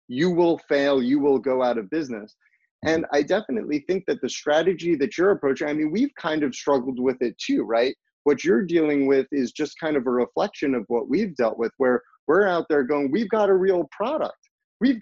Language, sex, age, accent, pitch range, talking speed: English, male, 30-49, American, 130-170 Hz, 220 wpm